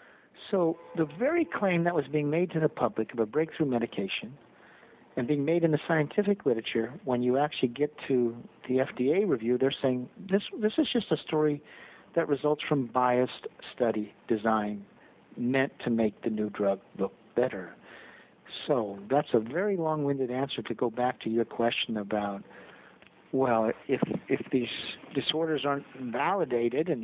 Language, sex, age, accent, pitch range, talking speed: English, male, 50-69, American, 115-150 Hz, 160 wpm